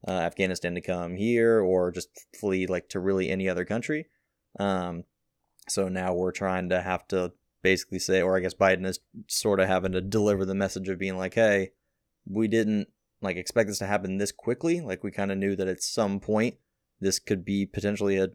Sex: male